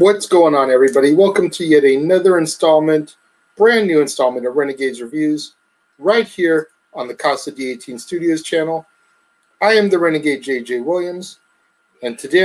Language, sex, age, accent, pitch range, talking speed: English, male, 40-59, American, 140-210 Hz, 150 wpm